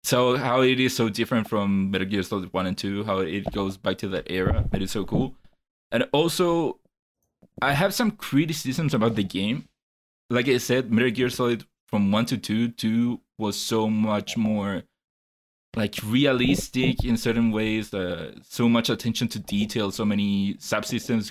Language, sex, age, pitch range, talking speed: English, male, 20-39, 100-125 Hz, 175 wpm